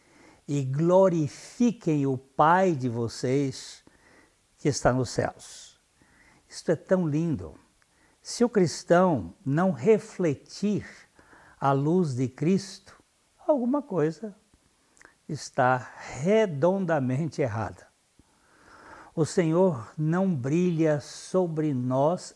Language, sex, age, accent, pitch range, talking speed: Portuguese, male, 60-79, Brazilian, 135-185 Hz, 90 wpm